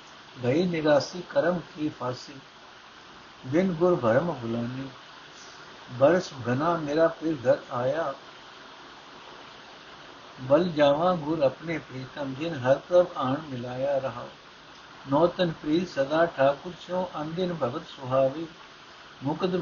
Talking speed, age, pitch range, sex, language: 105 wpm, 60-79, 135-175 Hz, male, Punjabi